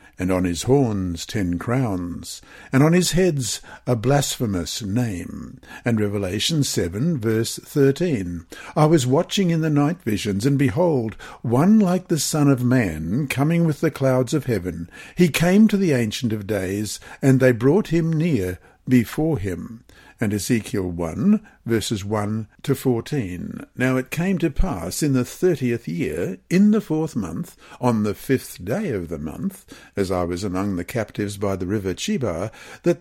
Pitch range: 110-145 Hz